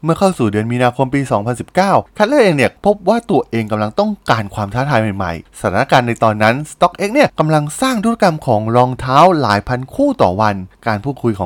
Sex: male